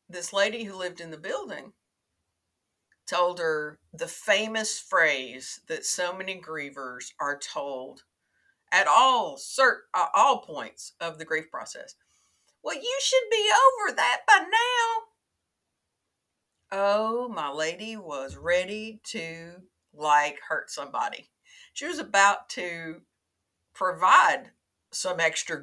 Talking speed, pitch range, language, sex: 120 wpm, 130-185 Hz, English, female